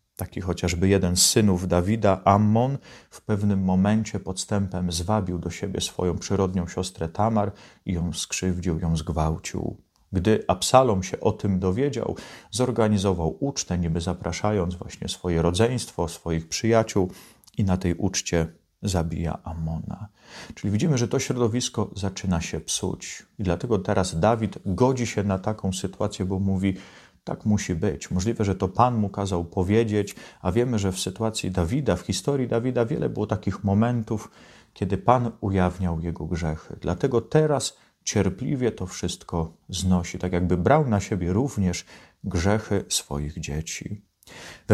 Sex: male